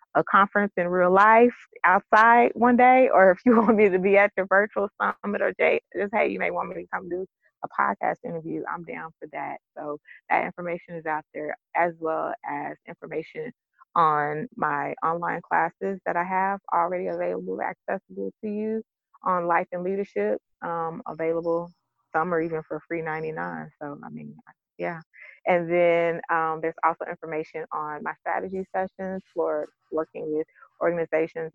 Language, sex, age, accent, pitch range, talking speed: English, female, 20-39, American, 155-190 Hz, 170 wpm